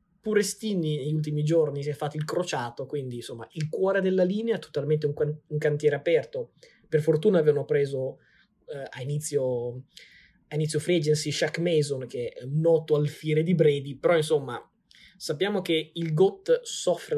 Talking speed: 175 wpm